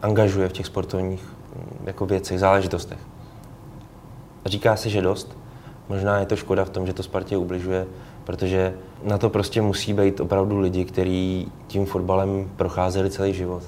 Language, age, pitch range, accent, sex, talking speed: Czech, 20-39, 95-115 Hz, native, male, 160 wpm